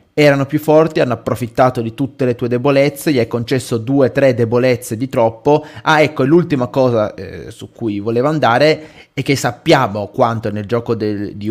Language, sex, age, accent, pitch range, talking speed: Italian, male, 30-49, native, 105-125 Hz, 180 wpm